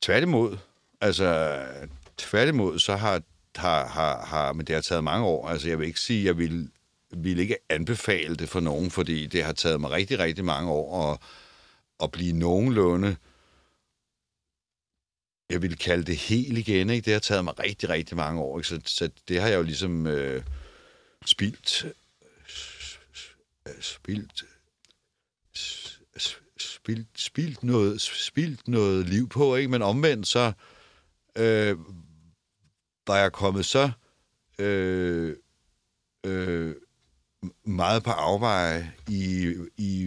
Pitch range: 80-105 Hz